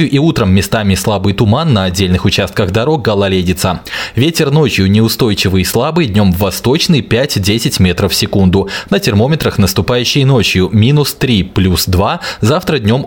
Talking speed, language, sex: 140 wpm, Russian, male